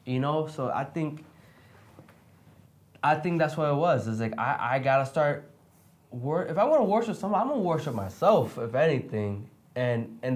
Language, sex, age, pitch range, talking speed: English, male, 20-39, 115-165 Hz, 185 wpm